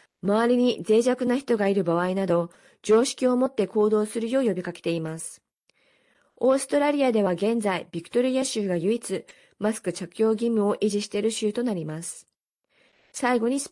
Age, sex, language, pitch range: 40-59, female, Japanese, 185-240 Hz